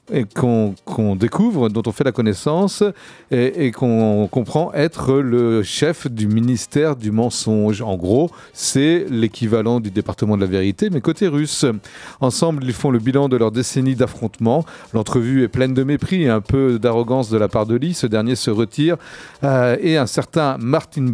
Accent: French